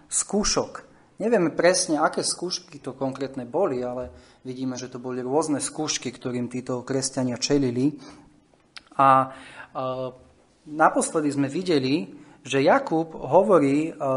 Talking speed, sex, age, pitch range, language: 120 wpm, male, 30-49, 135-175 Hz, Slovak